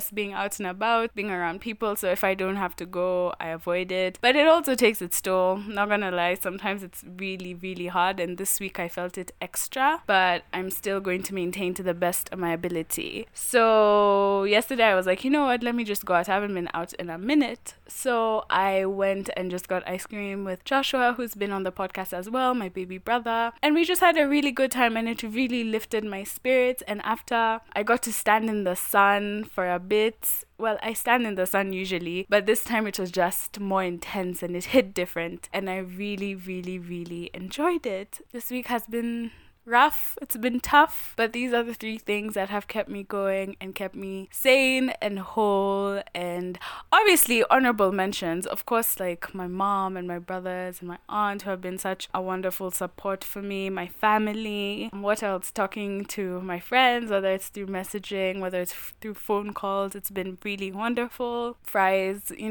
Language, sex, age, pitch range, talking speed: English, female, 20-39, 185-225 Hz, 205 wpm